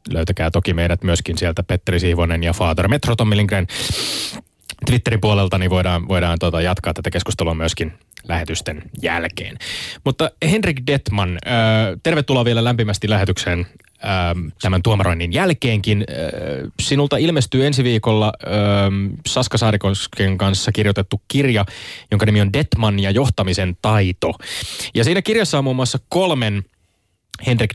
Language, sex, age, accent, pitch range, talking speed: Finnish, male, 20-39, native, 95-125 Hz, 130 wpm